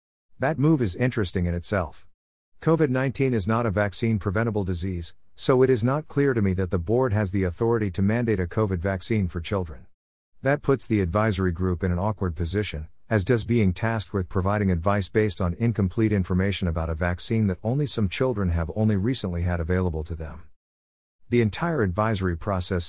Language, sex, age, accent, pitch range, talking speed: English, male, 50-69, American, 90-115 Hz, 190 wpm